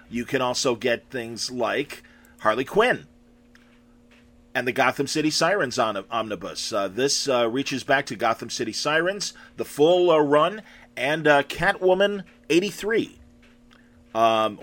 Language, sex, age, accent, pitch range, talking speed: English, male, 40-59, American, 120-150 Hz, 130 wpm